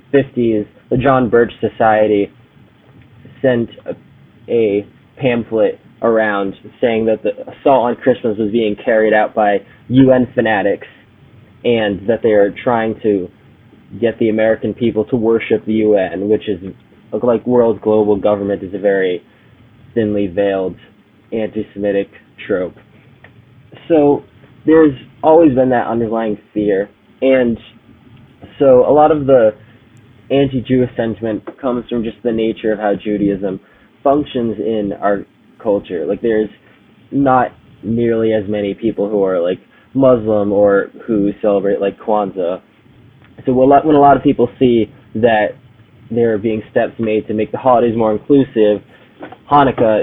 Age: 20-39